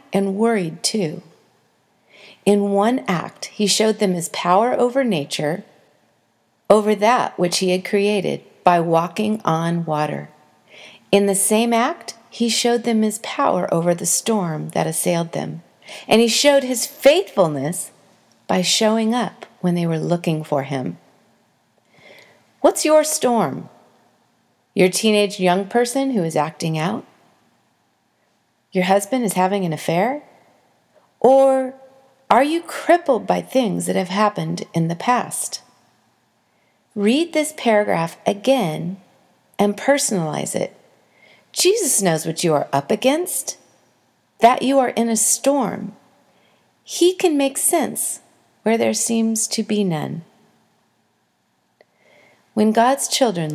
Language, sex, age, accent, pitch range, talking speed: English, female, 40-59, American, 180-250 Hz, 130 wpm